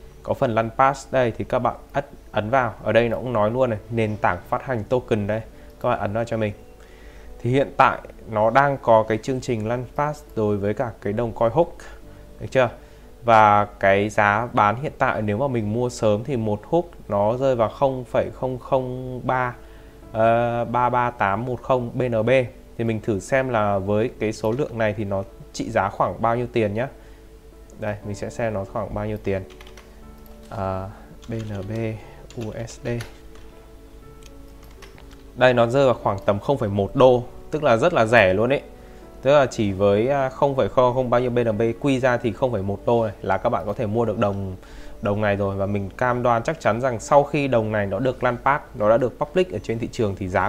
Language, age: Vietnamese, 20-39